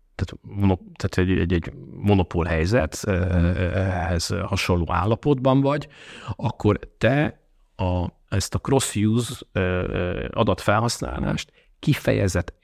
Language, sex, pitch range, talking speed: Hungarian, male, 90-110 Hz, 85 wpm